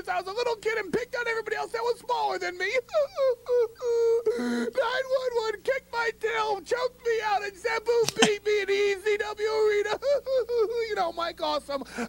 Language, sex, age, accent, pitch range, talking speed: English, male, 40-59, American, 260-340 Hz, 170 wpm